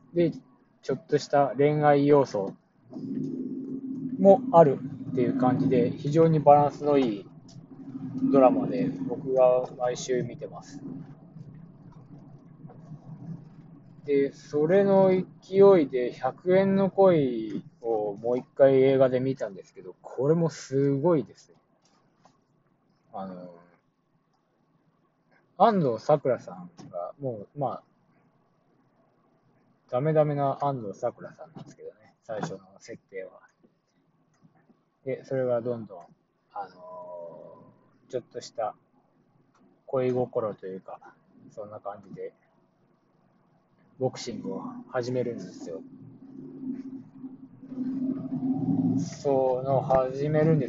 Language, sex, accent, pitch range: Japanese, male, native, 130-170 Hz